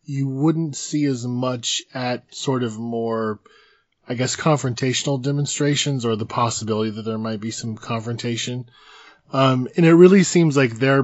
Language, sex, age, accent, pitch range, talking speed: English, male, 20-39, American, 110-135 Hz, 160 wpm